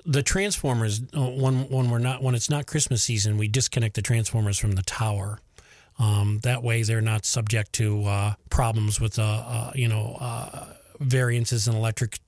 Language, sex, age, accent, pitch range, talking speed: English, male, 40-59, American, 110-125 Hz, 175 wpm